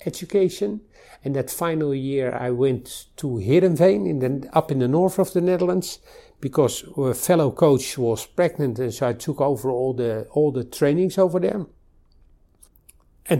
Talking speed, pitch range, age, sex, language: 165 wpm, 125-170 Hz, 60-79, male, English